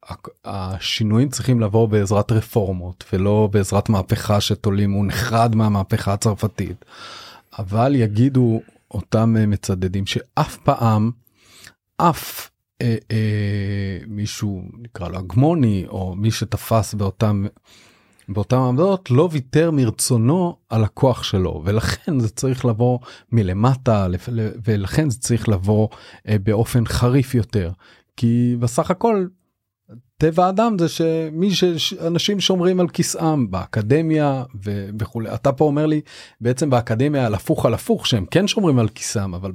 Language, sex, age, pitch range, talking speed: Hebrew, male, 30-49, 105-130 Hz, 115 wpm